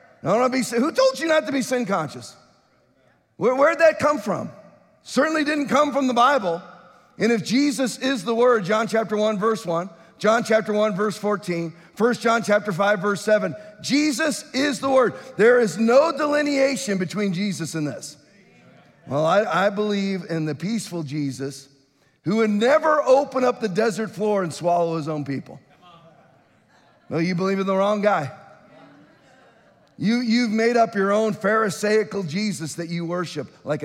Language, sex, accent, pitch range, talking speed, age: English, male, American, 185-255 Hz, 175 wpm, 40-59